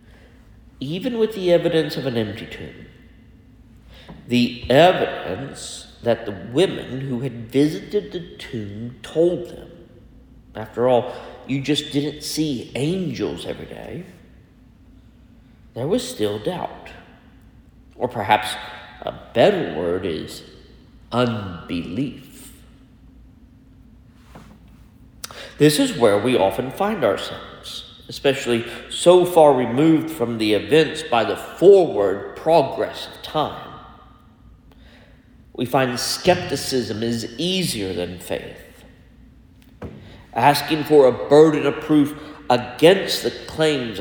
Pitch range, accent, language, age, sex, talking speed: 110-150 Hz, American, English, 50-69, male, 105 wpm